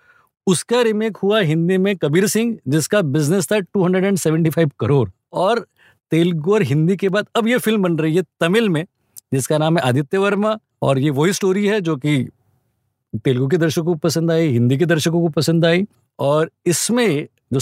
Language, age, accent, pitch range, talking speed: Hindi, 50-69, native, 130-175 Hz, 180 wpm